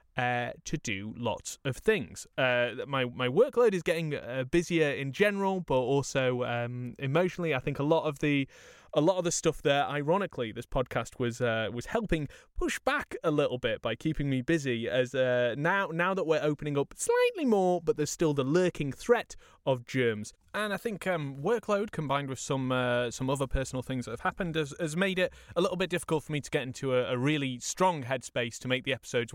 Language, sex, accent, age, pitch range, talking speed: English, male, British, 20-39, 125-180 Hz, 215 wpm